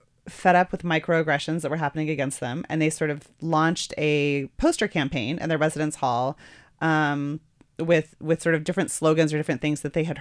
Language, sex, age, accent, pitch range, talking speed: English, female, 30-49, American, 140-165 Hz, 200 wpm